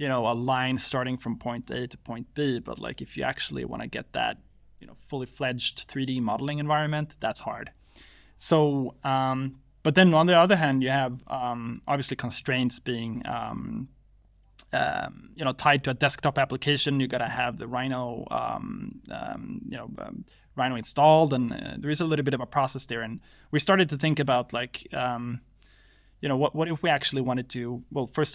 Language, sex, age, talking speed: English, male, 20-39, 195 wpm